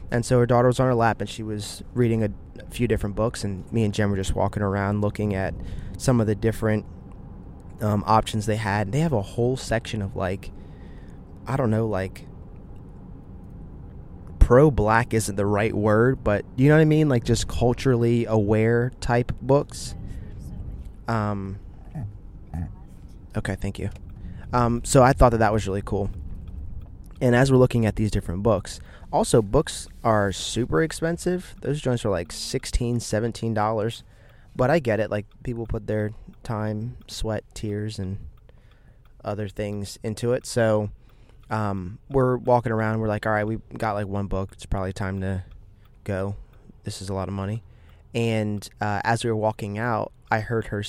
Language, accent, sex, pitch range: English, American, male, 95-115 Hz